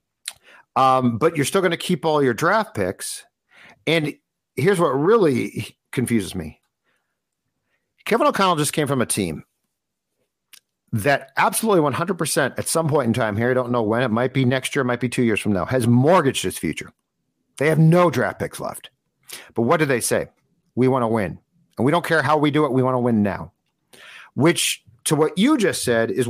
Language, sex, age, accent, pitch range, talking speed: English, male, 50-69, American, 120-165 Hz, 200 wpm